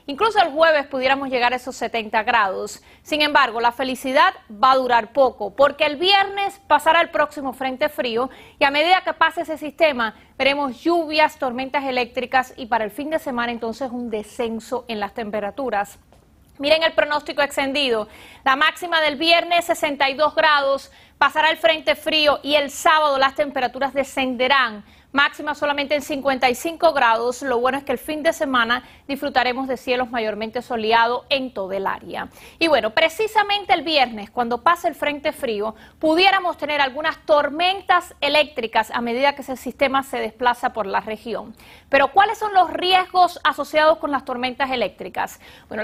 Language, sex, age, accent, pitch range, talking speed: Spanish, female, 30-49, American, 250-315 Hz, 165 wpm